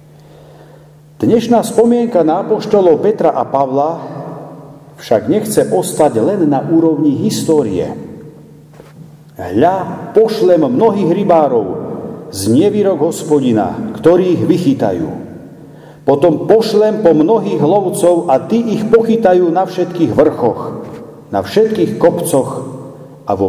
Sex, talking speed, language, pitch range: male, 100 wpm, Slovak, 130-185 Hz